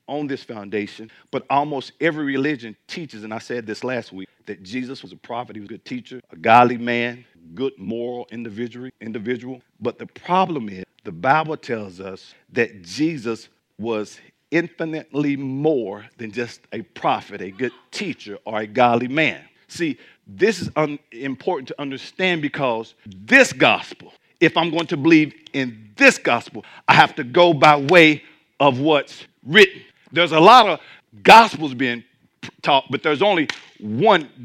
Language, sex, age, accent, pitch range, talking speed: English, male, 50-69, American, 120-195 Hz, 160 wpm